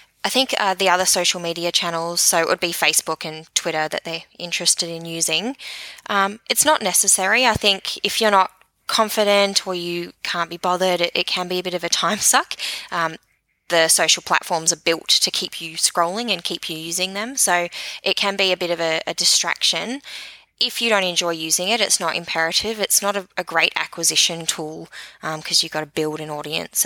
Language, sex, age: English, female, 20-39